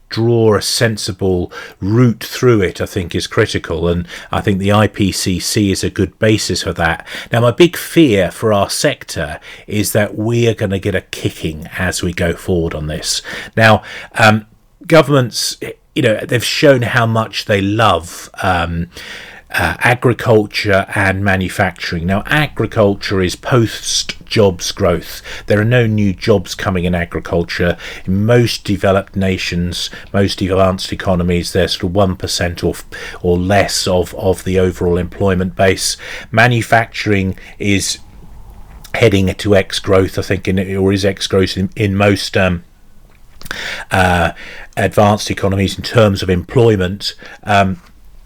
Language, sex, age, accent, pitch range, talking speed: English, male, 40-59, British, 90-110 Hz, 150 wpm